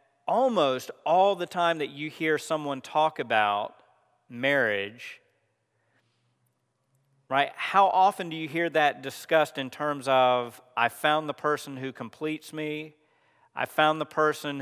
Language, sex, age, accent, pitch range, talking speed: English, male, 40-59, American, 120-155 Hz, 135 wpm